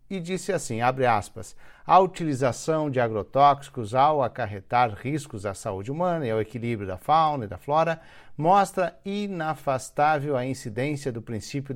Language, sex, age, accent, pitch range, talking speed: Portuguese, male, 50-69, Brazilian, 125-170 Hz, 150 wpm